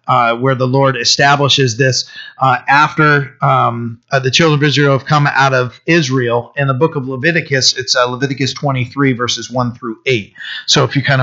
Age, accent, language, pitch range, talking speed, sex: 30-49, American, English, 125-155 Hz, 195 wpm, male